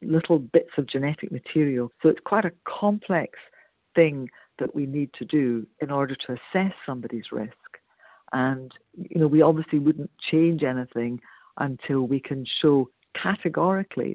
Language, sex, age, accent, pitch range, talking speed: English, female, 60-79, British, 130-170 Hz, 150 wpm